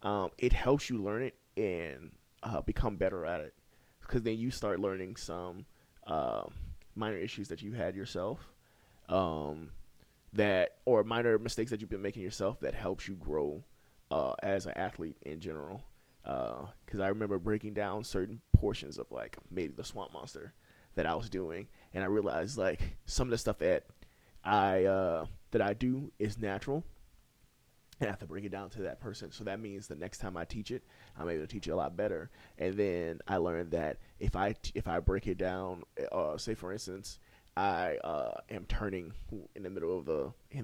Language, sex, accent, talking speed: English, male, American, 190 wpm